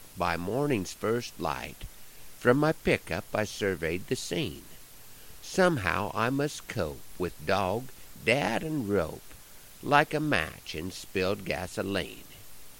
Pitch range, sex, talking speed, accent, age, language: 95-145 Hz, male, 120 wpm, American, 60-79, English